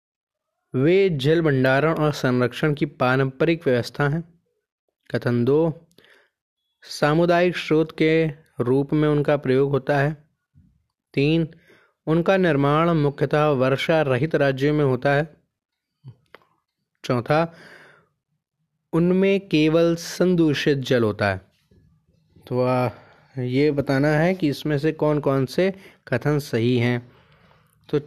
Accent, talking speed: native, 110 wpm